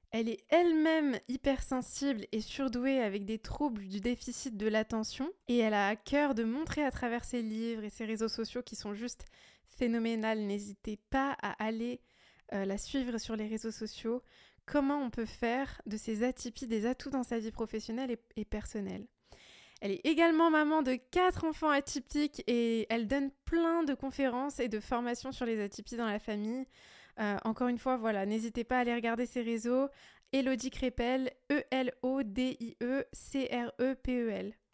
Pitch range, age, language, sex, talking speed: 225-265 Hz, 20-39, French, female, 170 wpm